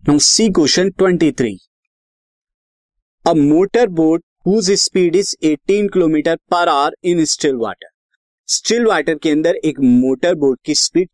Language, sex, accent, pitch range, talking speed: Hindi, male, native, 145-190 Hz, 135 wpm